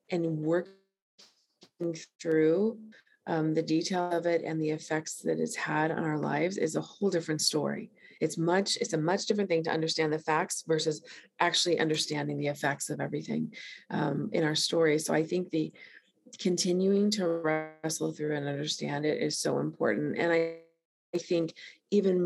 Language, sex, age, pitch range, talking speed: English, female, 30-49, 155-185 Hz, 170 wpm